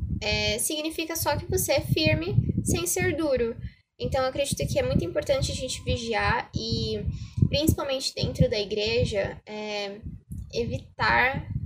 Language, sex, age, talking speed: Portuguese, female, 10-29, 130 wpm